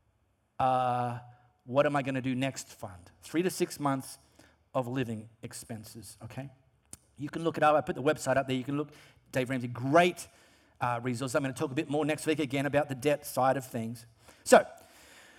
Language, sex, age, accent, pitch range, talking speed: English, male, 40-59, Australian, 145-215 Hz, 200 wpm